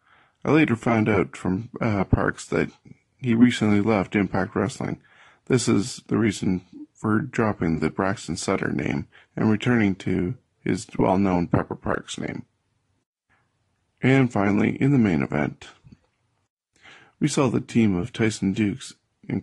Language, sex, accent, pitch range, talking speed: English, male, American, 95-115 Hz, 140 wpm